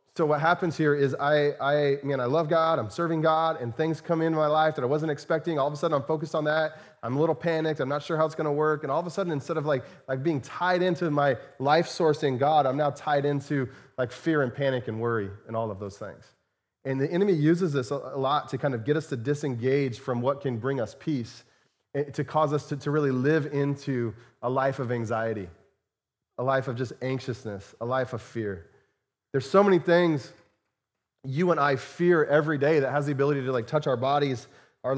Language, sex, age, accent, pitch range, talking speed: English, male, 30-49, American, 125-155 Hz, 235 wpm